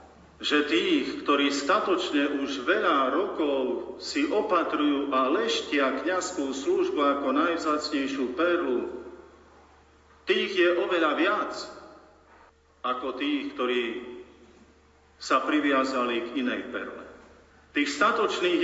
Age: 50-69